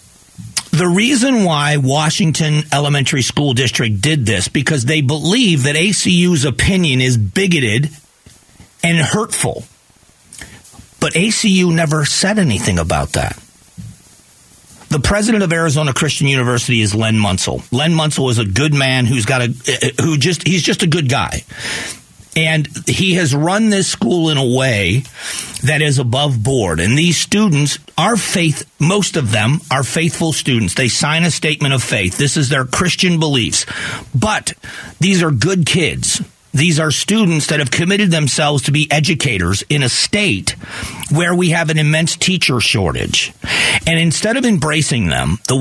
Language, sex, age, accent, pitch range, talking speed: English, male, 50-69, American, 130-170 Hz, 155 wpm